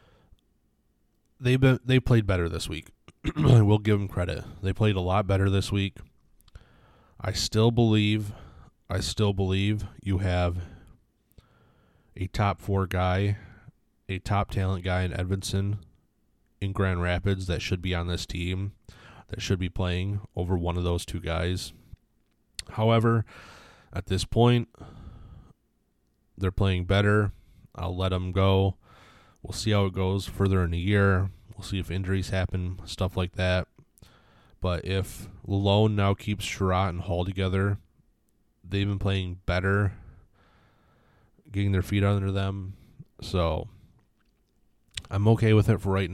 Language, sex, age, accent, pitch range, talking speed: English, male, 20-39, American, 90-100 Hz, 140 wpm